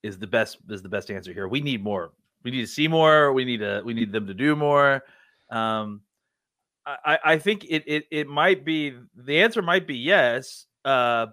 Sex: male